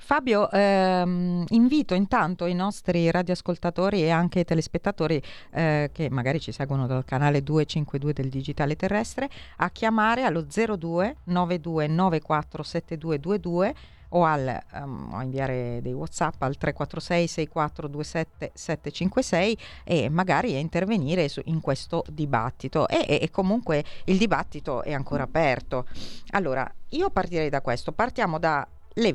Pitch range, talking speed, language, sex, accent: 130-175 Hz, 130 wpm, Italian, female, native